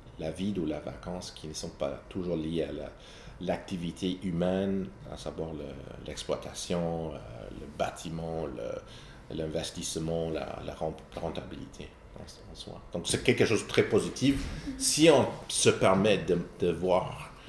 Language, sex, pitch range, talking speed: French, male, 85-105 Hz, 150 wpm